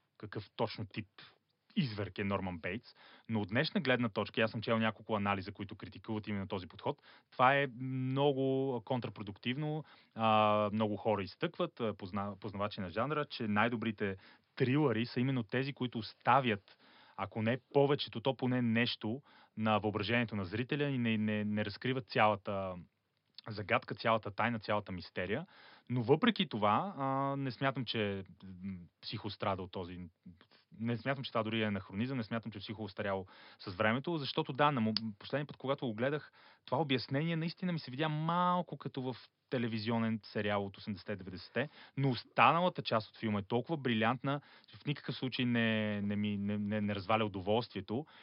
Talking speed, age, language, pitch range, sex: 155 wpm, 30-49, Bulgarian, 105-130 Hz, male